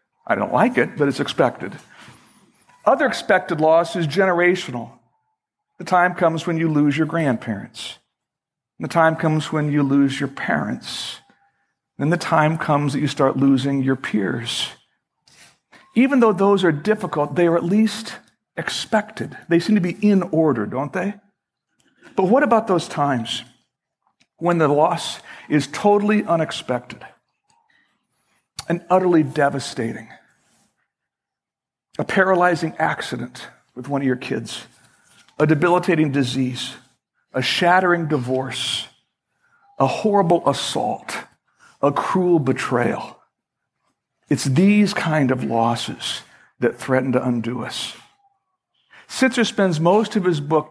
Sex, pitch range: male, 135-185 Hz